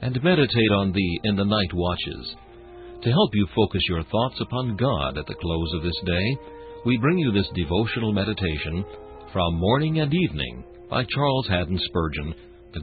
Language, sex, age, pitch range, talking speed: English, male, 60-79, 90-120 Hz, 175 wpm